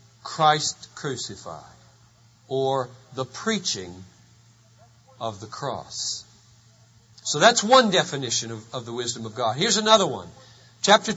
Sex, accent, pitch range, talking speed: male, American, 150-225 Hz, 120 wpm